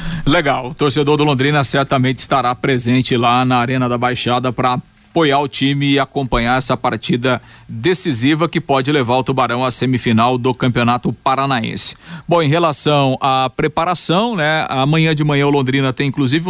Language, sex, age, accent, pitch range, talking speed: Portuguese, male, 40-59, Brazilian, 130-155 Hz, 165 wpm